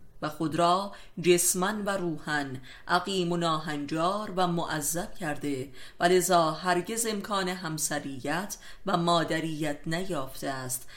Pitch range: 150-185 Hz